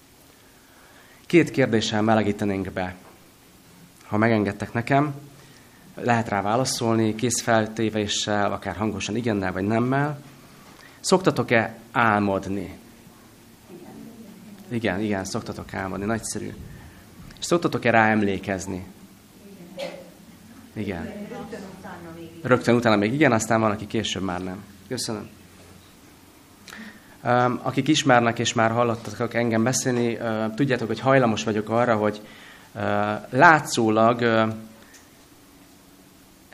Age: 30-49